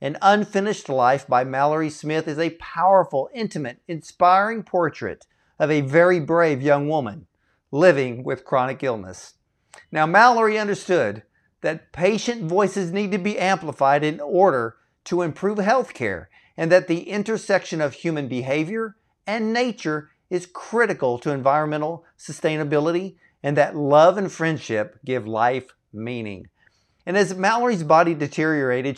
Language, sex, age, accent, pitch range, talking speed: English, male, 50-69, American, 140-190 Hz, 135 wpm